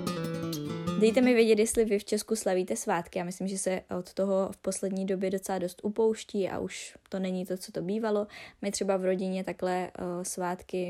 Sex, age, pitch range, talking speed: female, 20-39, 175-200 Hz, 195 wpm